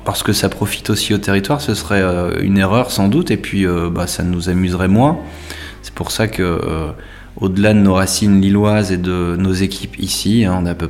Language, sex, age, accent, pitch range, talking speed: French, male, 20-39, French, 90-105 Hz, 200 wpm